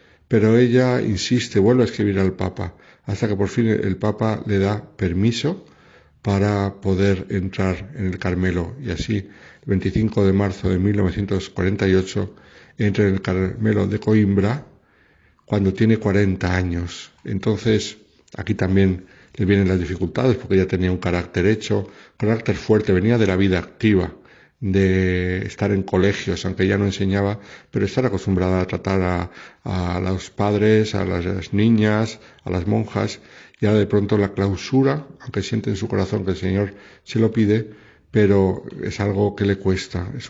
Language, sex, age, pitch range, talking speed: Spanish, male, 60-79, 95-110 Hz, 165 wpm